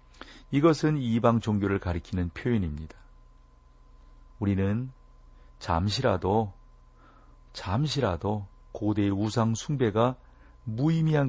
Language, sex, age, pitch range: Korean, male, 40-59, 90-120 Hz